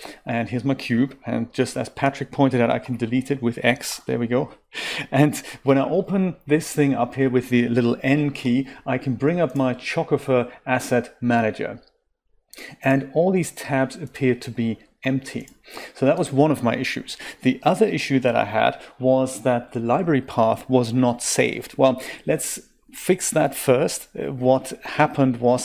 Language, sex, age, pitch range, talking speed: English, male, 40-59, 120-140 Hz, 180 wpm